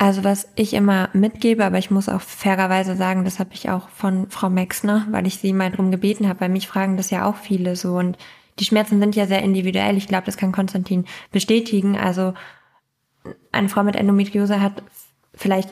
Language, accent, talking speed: German, German, 200 wpm